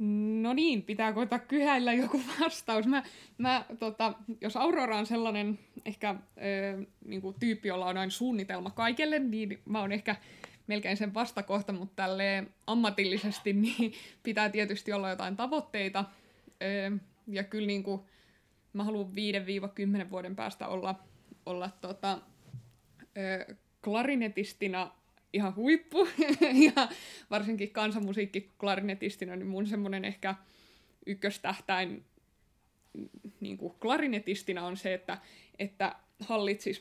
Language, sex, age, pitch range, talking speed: Finnish, female, 20-39, 195-220 Hz, 115 wpm